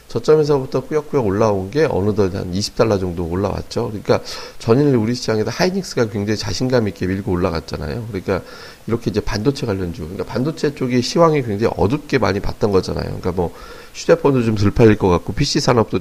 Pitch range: 95-125 Hz